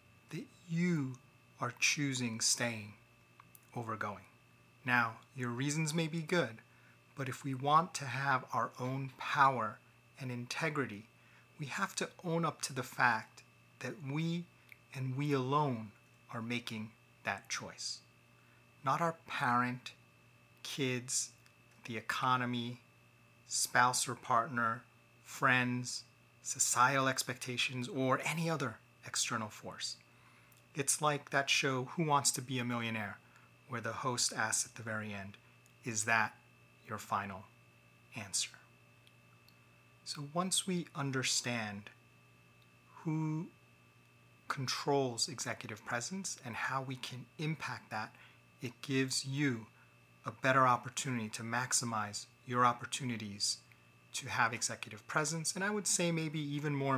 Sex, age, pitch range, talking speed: male, 30-49, 115-140 Hz, 120 wpm